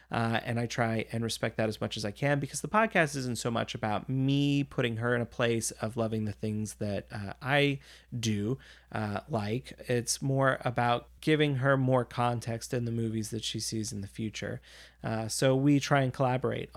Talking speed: 205 wpm